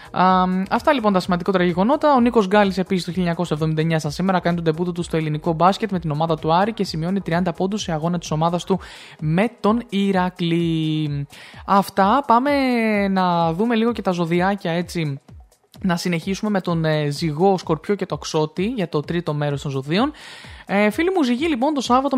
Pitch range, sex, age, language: 165-220 Hz, male, 20-39, Greek